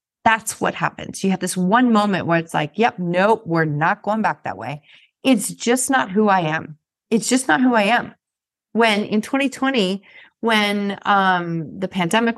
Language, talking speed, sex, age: English, 185 wpm, female, 30-49